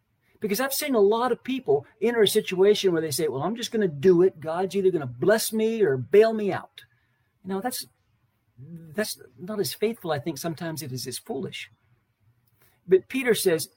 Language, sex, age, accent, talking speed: English, male, 50-69, American, 195 wpm